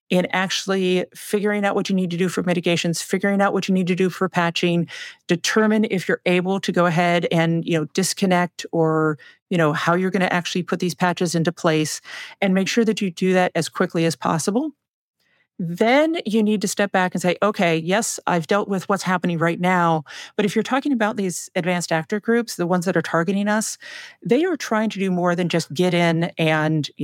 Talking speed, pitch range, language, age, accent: 220 wpm, 175-215 Hz, English, 40-59, American